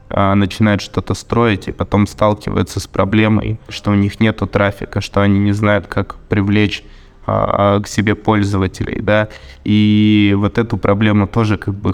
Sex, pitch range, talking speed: male, 100-110 Hz, 150 wpm